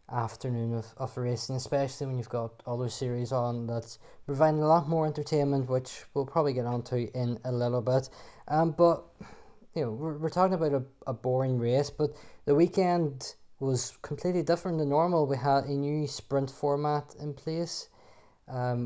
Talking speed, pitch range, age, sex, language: 180 wpm, 120-145 Hz, 20-39, male, English